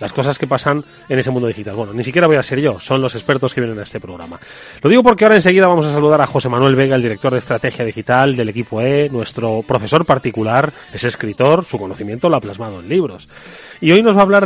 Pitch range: 125-170 Hz